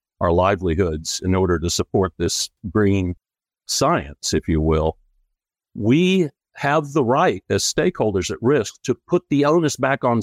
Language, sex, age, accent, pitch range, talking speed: English, male, 60-79, American, 90-120 Hz, 155 wpm